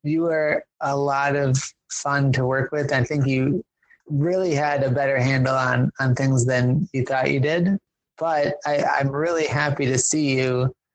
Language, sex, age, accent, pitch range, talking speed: English, male, 30-49, American, 130-145 Hz, 180 wpm